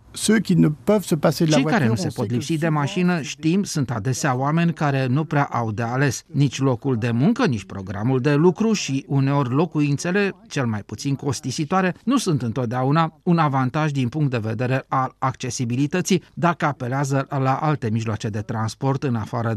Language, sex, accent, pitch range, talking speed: Romanian, male, native, 125-175 Hz, 165 wpm